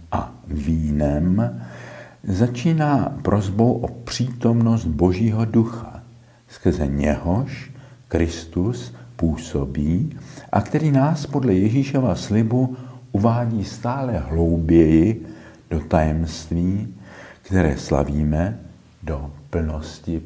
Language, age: Czech, 60-79